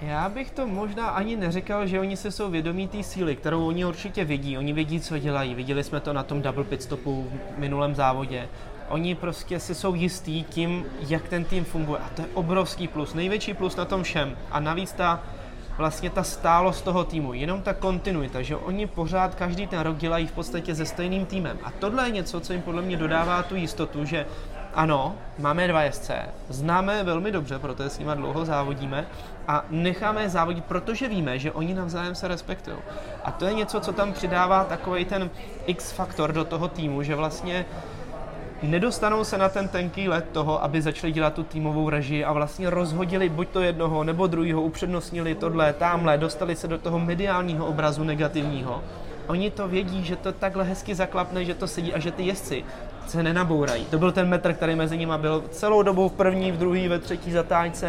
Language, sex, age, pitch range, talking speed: Czech, male, 20-39, 155-185 Hz, 200 wpm